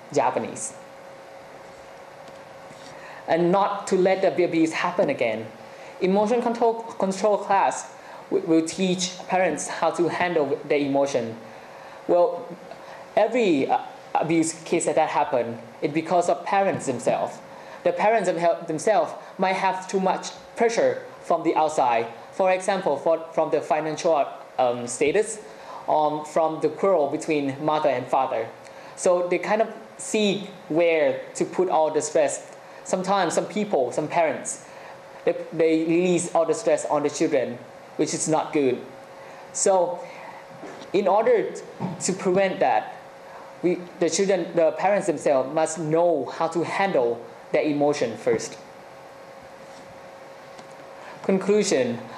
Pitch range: 160-195 Hz